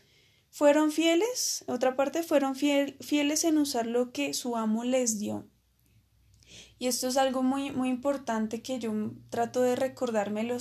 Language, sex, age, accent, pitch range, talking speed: Spanish, female, 20-39, Colombian, 220-275 Hz, 145 wpm